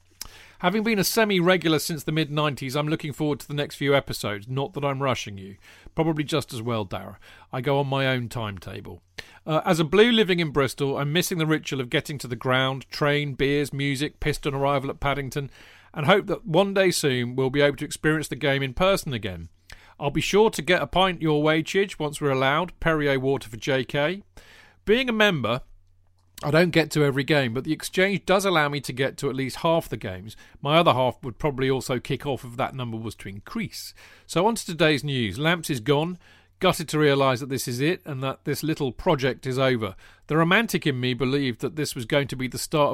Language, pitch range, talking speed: English, 130-170 Hz, 220 wpm